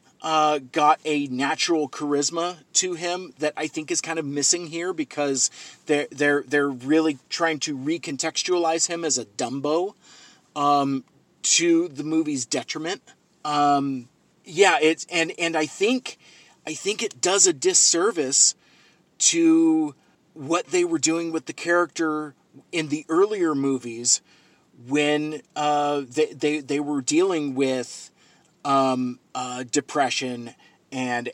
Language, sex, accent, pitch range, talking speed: English, male, American, 130-175 Hz, 130 wpm